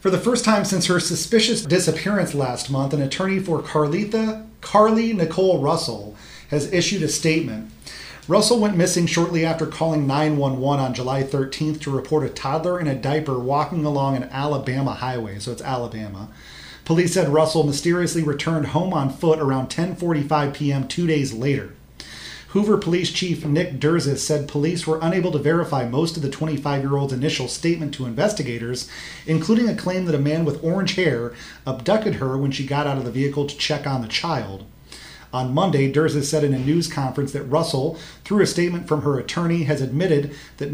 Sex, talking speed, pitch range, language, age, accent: male, 180 wpm, 135-165 Hz, English, 40-59, American